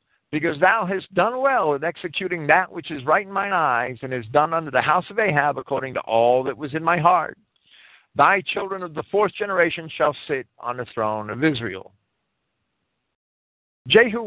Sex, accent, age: male, American, 50-69